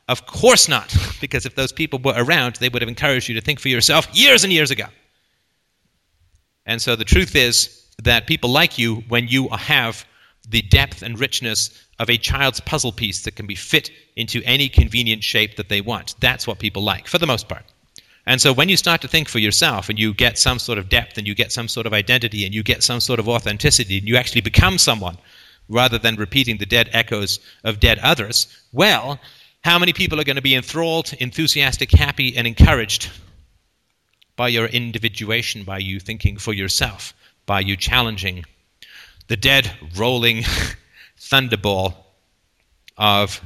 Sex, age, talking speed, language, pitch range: male, 40-59, 185 wpm, English, 100-125 Hz